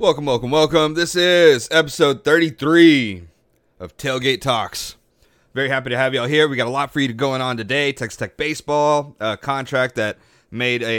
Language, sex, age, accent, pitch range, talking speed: English, male, 30-49, American, 115-145 Hz, 180 wpm